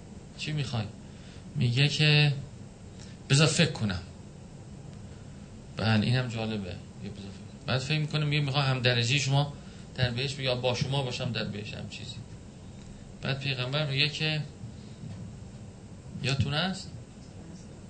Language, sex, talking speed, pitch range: Persian, male, 115 wpm, 115-145 Hz